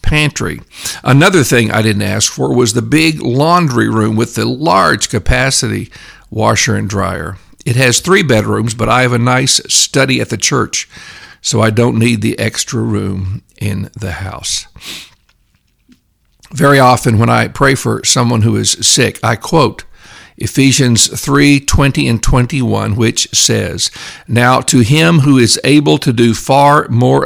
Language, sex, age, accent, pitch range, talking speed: English, male, 50-69, American, 110-135 Hz, 155 wpm